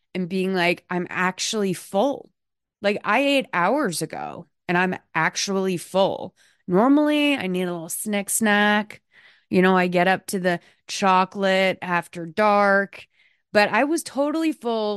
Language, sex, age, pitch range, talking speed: English, female, 30-49, 185-240 Hz, 150 wpm